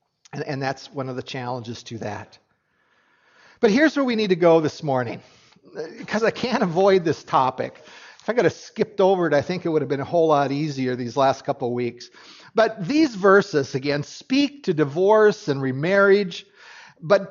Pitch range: 145-220 Hz